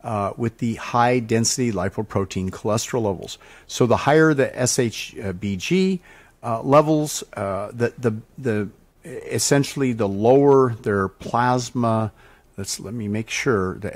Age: 50-69